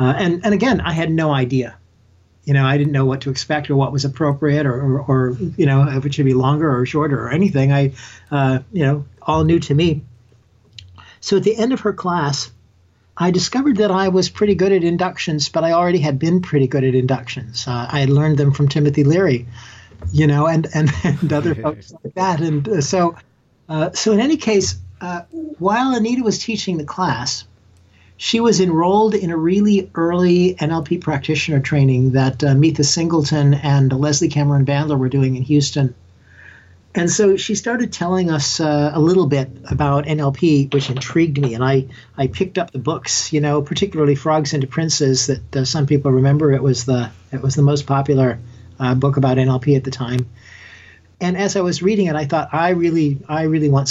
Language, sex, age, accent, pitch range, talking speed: English, male, 40-59, American, 130-170 Hz, 205 wpm